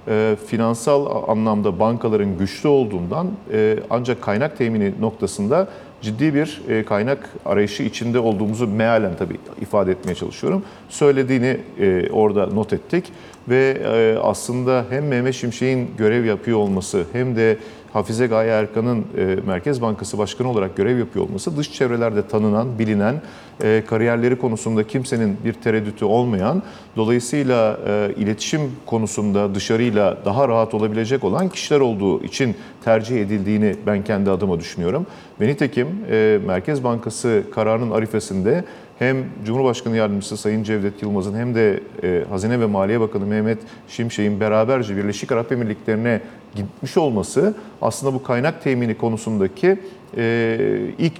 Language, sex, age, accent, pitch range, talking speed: Turkish, male, 50-69, native, 110-135 Hz, 125 wpm